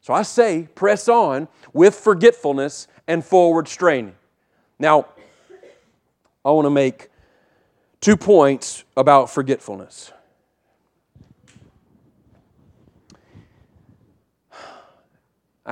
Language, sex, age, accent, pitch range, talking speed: English, male, 40-59, American, 120-155 Hz, 75 wpm